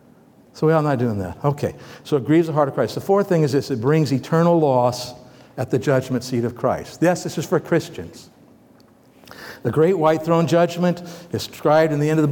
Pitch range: 130-170 Hz